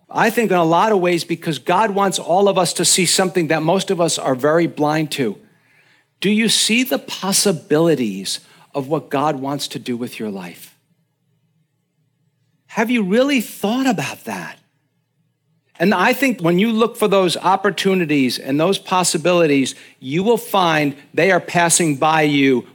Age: 60-79